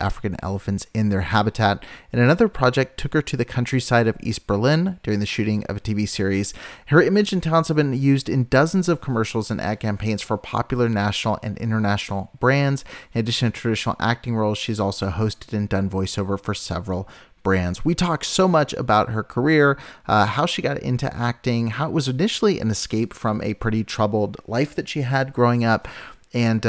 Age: 30-49